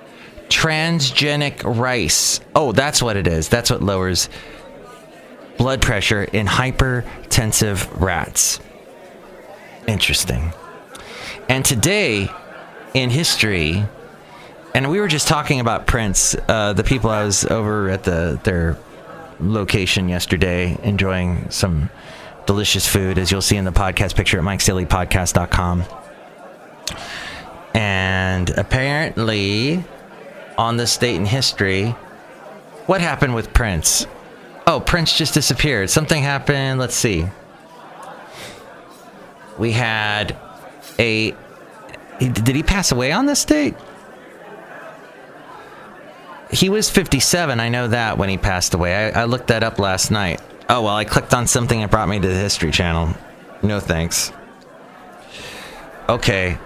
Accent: American